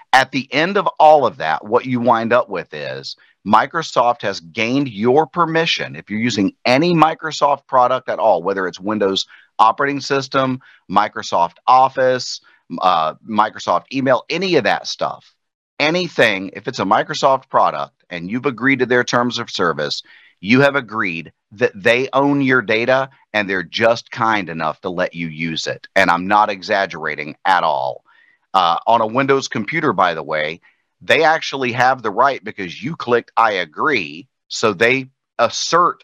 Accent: American